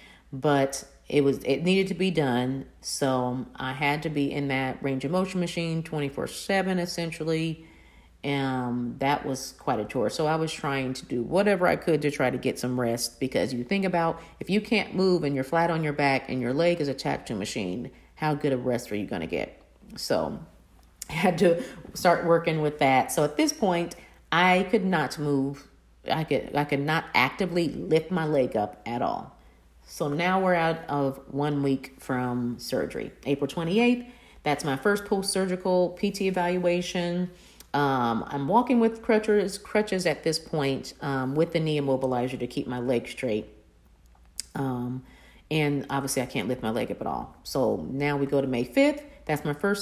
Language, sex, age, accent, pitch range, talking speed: English, female, 40-59, American, 135-185 Hz, 190 wpm